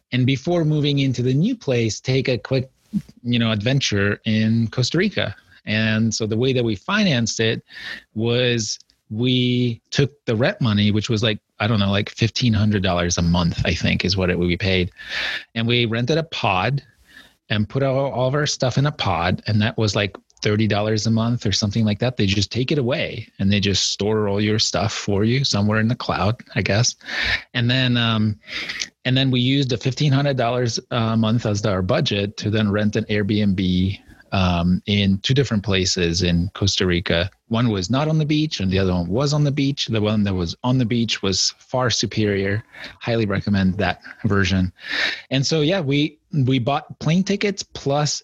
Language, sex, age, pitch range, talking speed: English, male, 30-49, 100-130 Hz, 195 wpm